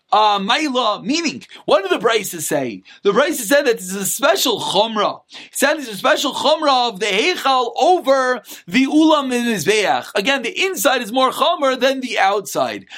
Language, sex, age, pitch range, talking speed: English, male, 30-49, 230-290 Hz, 195 wpm